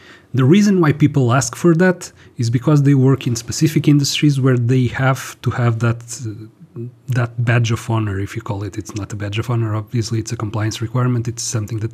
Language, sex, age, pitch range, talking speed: English, male, 40-59, 115-130 Hz, 215 wpm